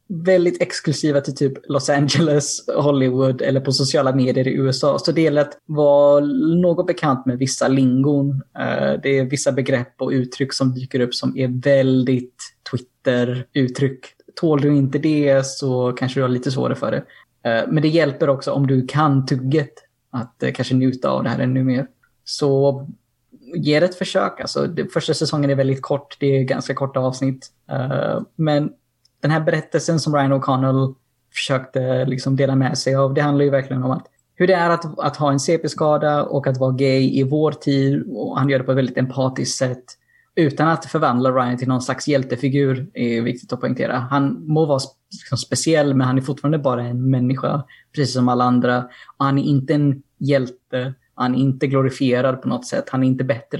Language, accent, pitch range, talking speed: Swedish, native, 130-145 Hz, 185 wpm